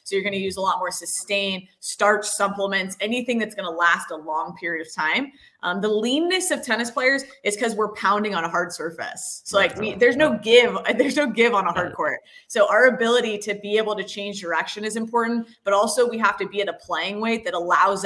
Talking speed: 235 wpm